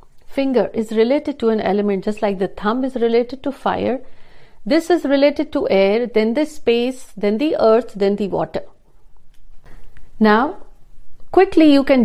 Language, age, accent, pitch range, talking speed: Hindi, 50-69, native, 205-250 Hz, 160 wpm